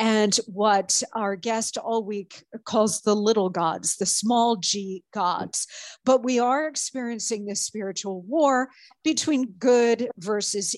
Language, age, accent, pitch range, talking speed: English, 50-69, American, 210-265 Hz, 135 wpm